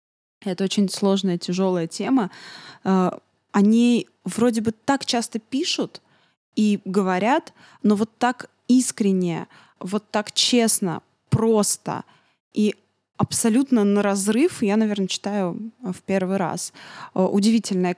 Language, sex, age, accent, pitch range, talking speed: Russian, female, 20-39, native, 180-215 Hz, 105 wpm